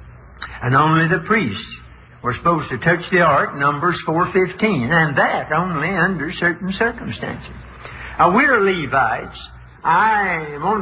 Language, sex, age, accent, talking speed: English, male, 60-79, American, 130 wpm